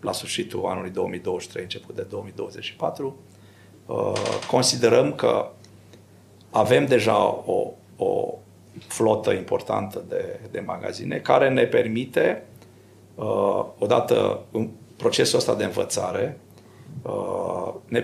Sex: male